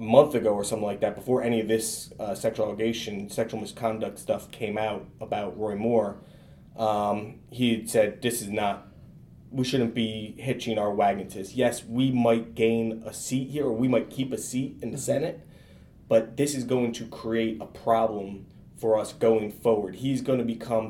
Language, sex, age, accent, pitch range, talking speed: English, male, 20-39, American, 110-135 Hz, 195 wpm